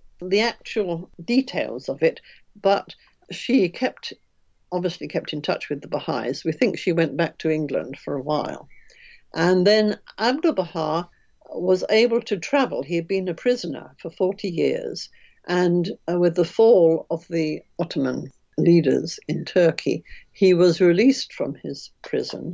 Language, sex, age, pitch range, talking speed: English, female, 60-79, 165-220 Hz, 150 wpm